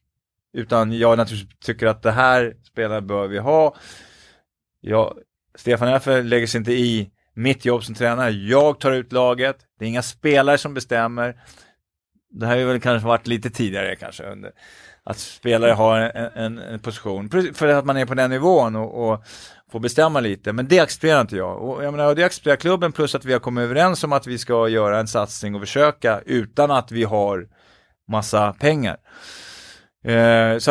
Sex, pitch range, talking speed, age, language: male, 110-135 Hz, 185 wpm, 20-39, Swedish